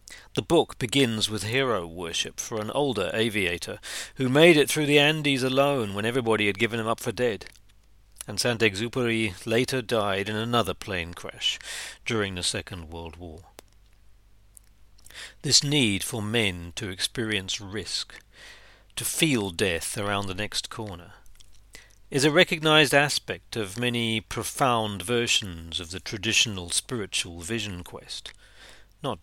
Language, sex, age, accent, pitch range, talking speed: English, male, 40-59, British, 100-125 Hz, 140 wpm